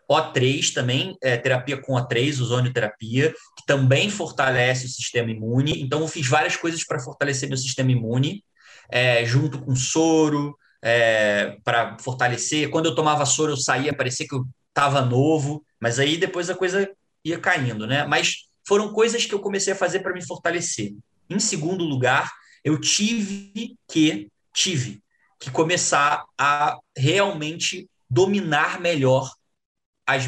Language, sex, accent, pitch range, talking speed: Portuguese, male, Brazilian, 130-195 Hz, 145 wpm